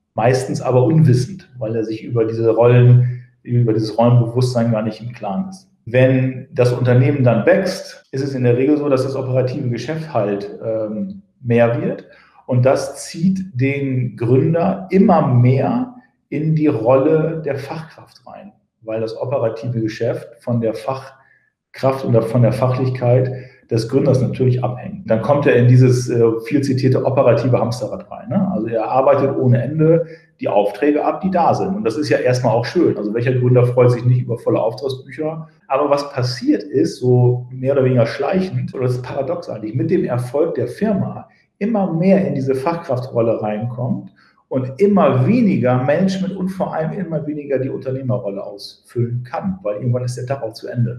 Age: 40-59